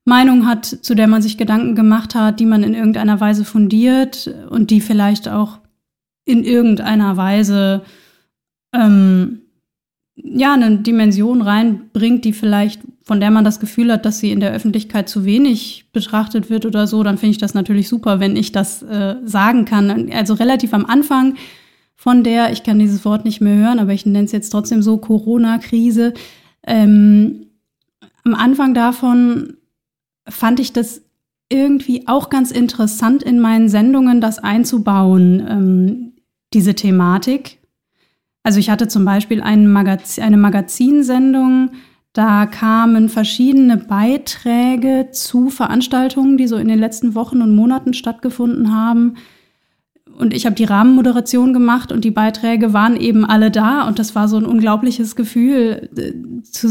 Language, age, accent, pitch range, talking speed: German, 30-49, German, 210-245 Hz, 150 wpm